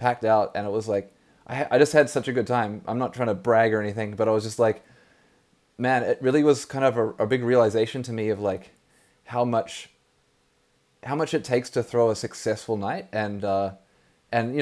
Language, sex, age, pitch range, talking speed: English, male, 20-39, 105-130 Hz, 225 wpm